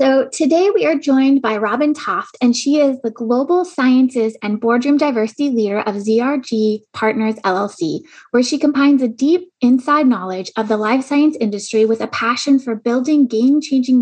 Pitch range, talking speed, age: 220-280 Hz, 170 wpm, 20-39